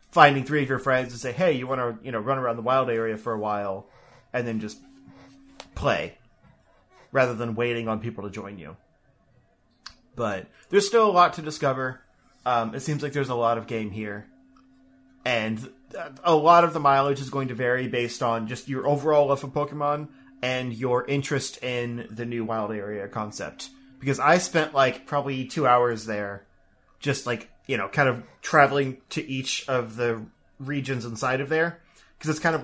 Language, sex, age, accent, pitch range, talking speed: English, male, 30-49, American, 120-140 Hz, 190 wpm